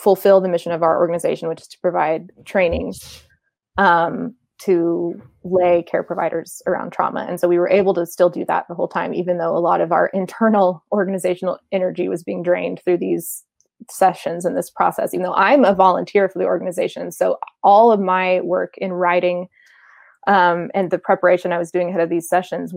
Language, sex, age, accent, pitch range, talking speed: English, female, 20-39, American, 170-195 Hz, 195 wpm